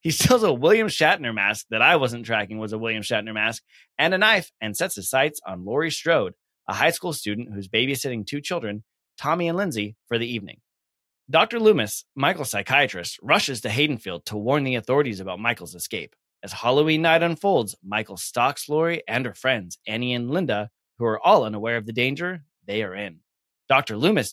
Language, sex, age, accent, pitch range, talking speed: English, male, 20-39, American, 105-155 Hz, 190 wpm